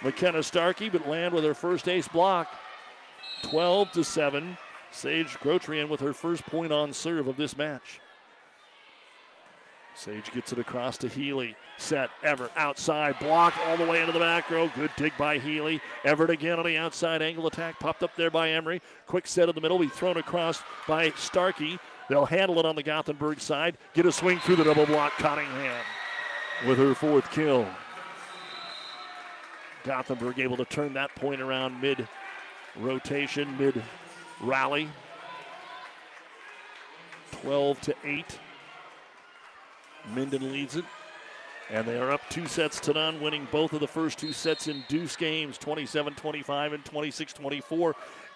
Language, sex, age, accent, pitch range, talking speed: English, male, 50-69, American, 140-170 Hz, 150 wpm